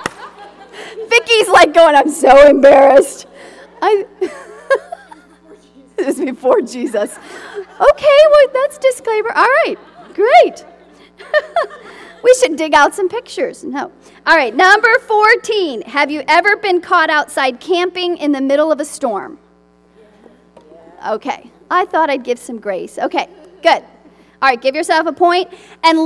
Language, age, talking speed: English, 40-59, 135 wpm